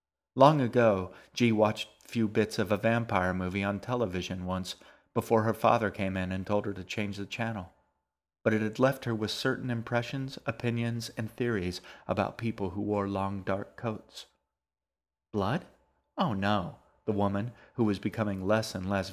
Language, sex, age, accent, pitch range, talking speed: English, male, 30-49, American, 95-115 Hz, 170 wpm